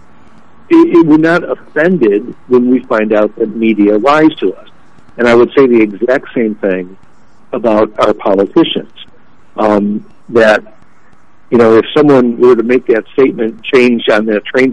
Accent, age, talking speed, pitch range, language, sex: American, 60-79, 160 wpm, 105-130 Hz, English, male